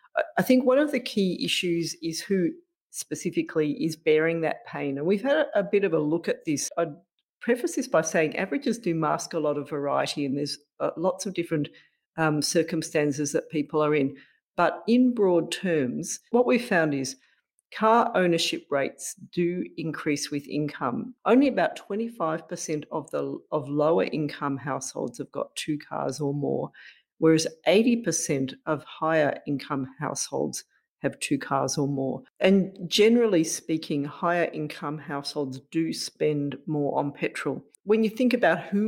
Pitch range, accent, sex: 150-190 Hz, Australian, female